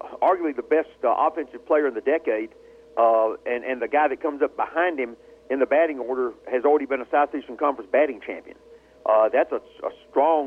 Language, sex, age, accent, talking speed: English, male, 50-69, American, 205 wpm